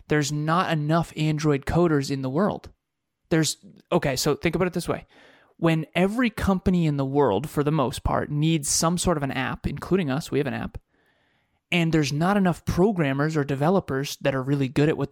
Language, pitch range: English, 130-160 Hz